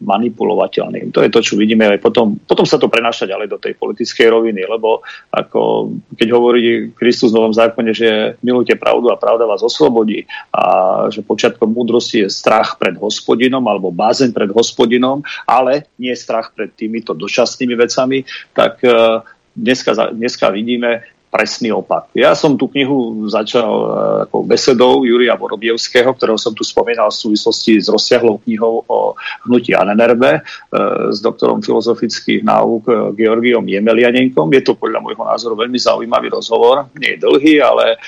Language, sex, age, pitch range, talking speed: Slovak, male, 40-59, 115-145 Hz, 155 wpm